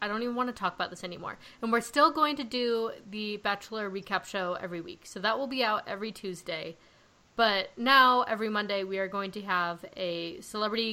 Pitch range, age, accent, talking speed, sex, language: 185-225 Hz, 20-39, American, 215 wpm, female, English